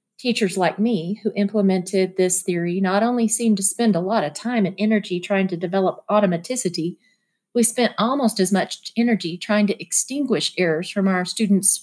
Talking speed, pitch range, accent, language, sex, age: 180 wpm, 180-215 Hz, American, English, female, 40-59